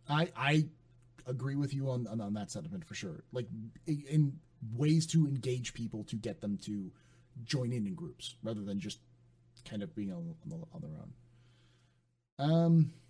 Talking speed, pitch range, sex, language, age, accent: 175 wpm, 115-155 Hz, male, English, 30-49, American